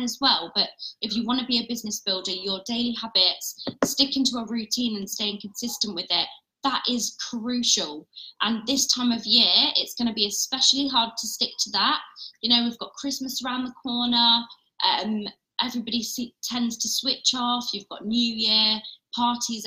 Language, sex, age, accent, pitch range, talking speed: English, female, 20-39, British, 210-245 Hz, 185 wpm